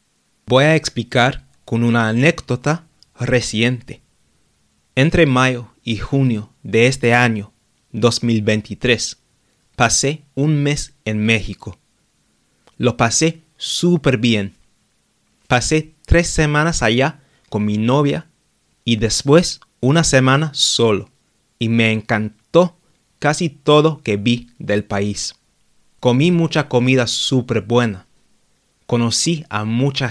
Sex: male